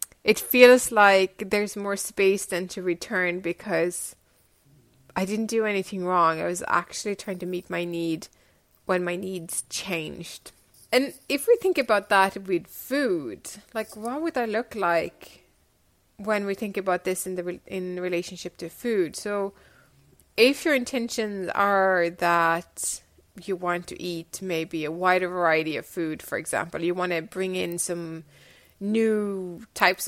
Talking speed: 160 wpm